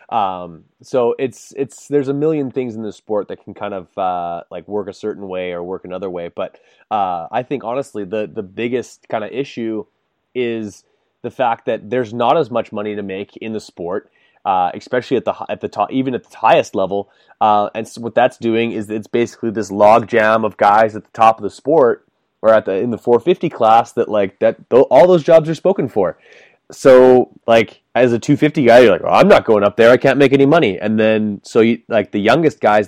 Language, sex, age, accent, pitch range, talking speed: English, male, 20-39, American, 105-120 Hz, 230 wpm